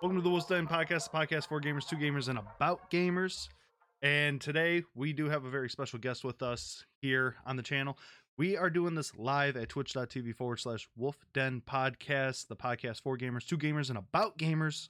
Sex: male